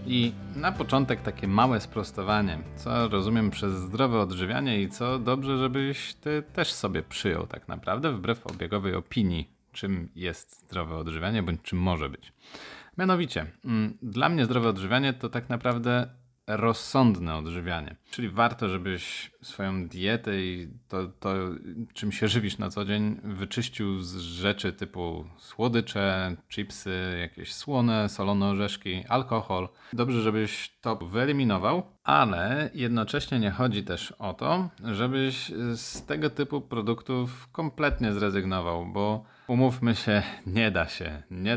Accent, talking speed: native, 135 wpm